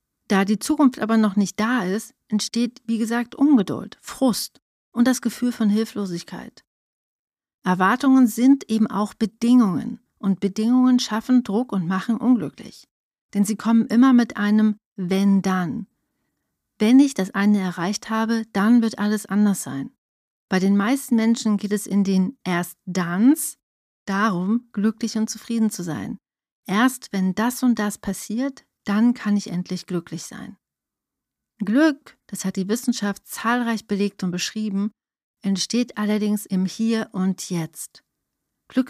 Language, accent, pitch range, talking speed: German, German, 195-240 Hz, 140 wpm